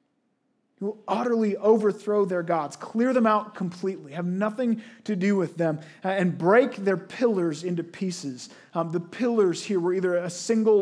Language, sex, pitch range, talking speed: English, male, 170-215 Hz, 165 wpm